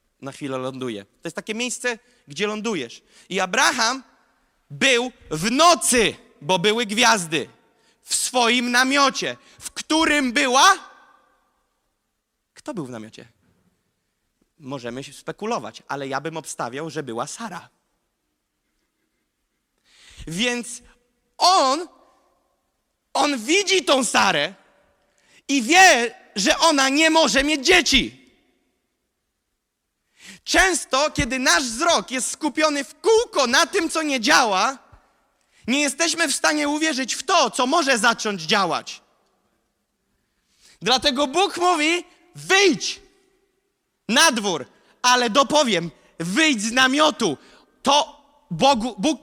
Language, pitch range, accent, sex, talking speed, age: Polish, 220-315 Hz, native, male, 105 wpm, 30-49